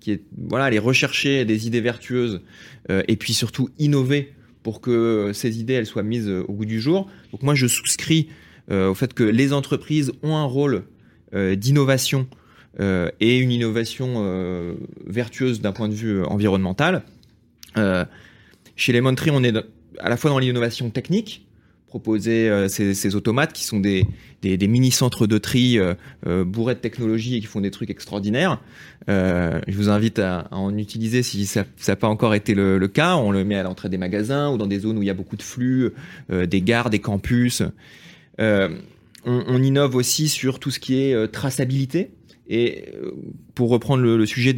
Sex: male